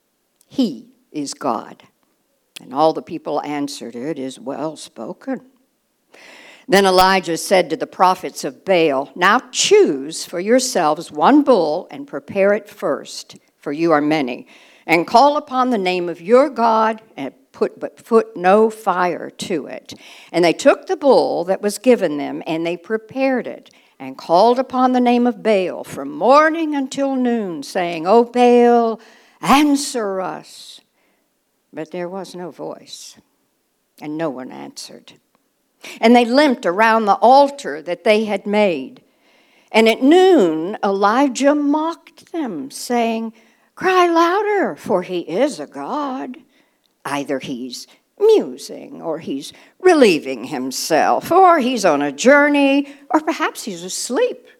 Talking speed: 140 wpm